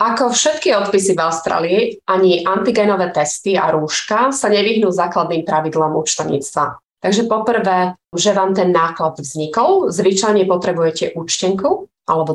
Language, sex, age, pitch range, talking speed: Slovak, female, 30-49, 165-195 Hz, 125 wpm